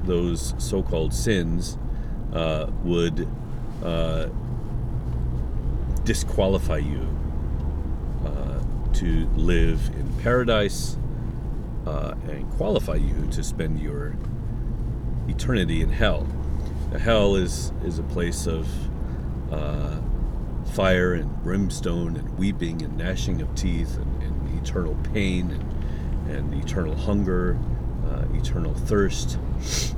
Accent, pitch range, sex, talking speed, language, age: American, 65-100 Hz, male, 100 wpm, English, 40-59